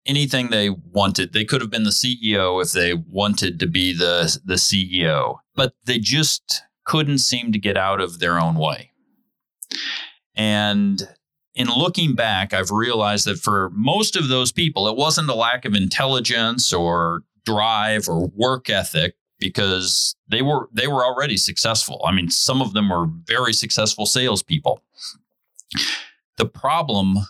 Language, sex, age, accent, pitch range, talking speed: English, male, 40-59, American, 95-135 Hz, 155 wpm